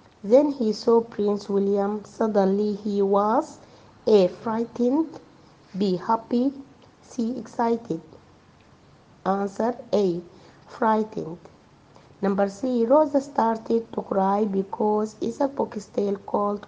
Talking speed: 100 wpm